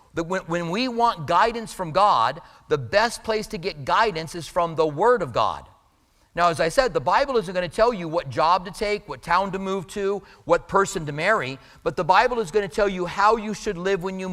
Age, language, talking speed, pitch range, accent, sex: 40-59, English, 240 wpm, 165-210 Hz, American, male